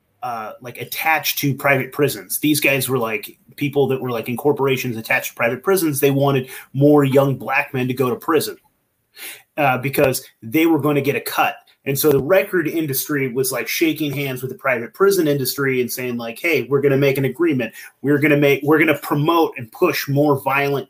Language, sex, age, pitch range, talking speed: English, male, 30-49, 130-145 Hz, 215 wpm